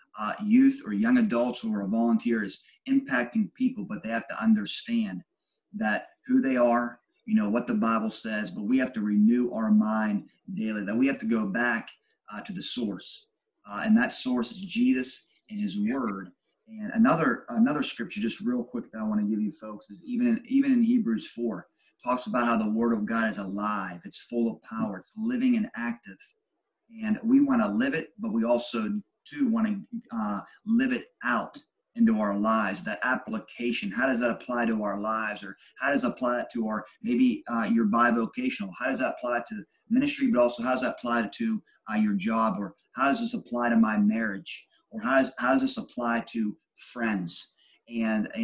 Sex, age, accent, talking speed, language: male, 30-49, American, 200 wpm, English